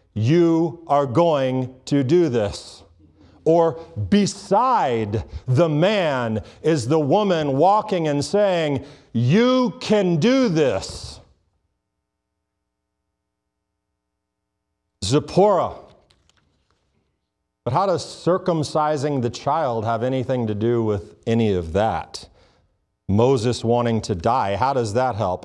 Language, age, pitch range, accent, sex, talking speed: English, 50-69, 100-150 Hz, American, male, 100 wpm